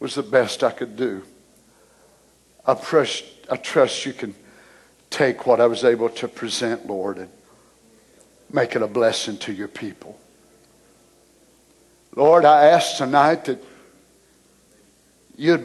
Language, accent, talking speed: English, American, 125 wpm